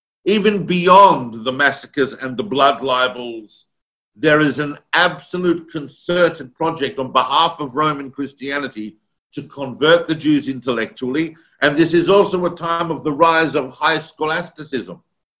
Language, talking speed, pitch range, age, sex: English, 140 wpm, 140-170 Hz, 50-69, male